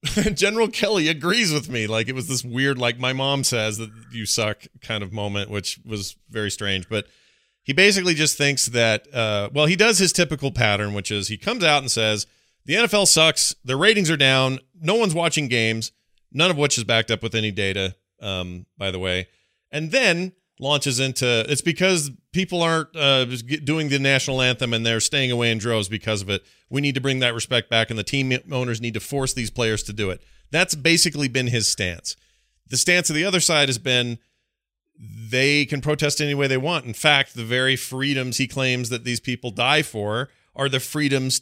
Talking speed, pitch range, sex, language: 210 wpm, 110-145 Hz, male, English